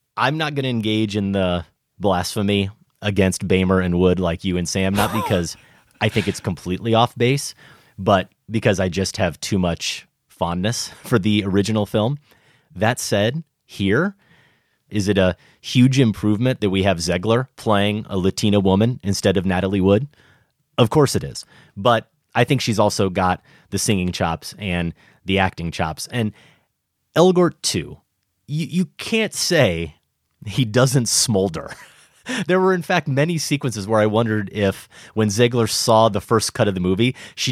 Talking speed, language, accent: 165 wpm, English, American